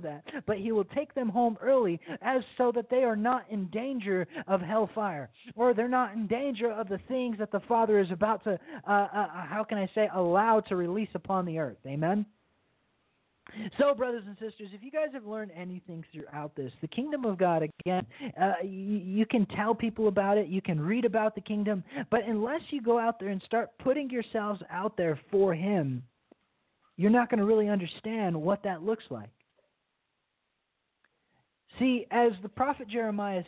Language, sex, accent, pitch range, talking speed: English, male, American, 180-225 Hz, 190 wpm